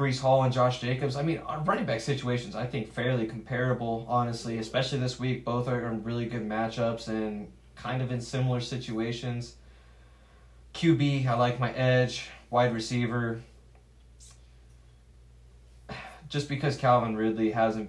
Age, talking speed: 20-39, 140 wpm